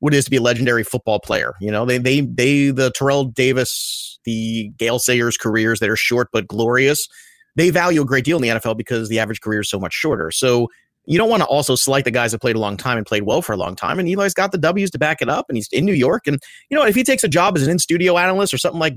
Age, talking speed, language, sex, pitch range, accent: 30-49, 290 wpm, English, male, 120-165 Hz, American